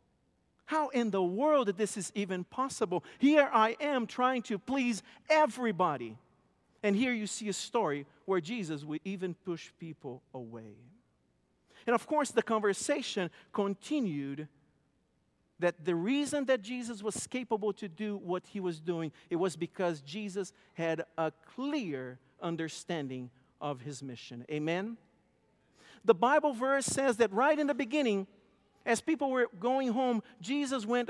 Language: Italian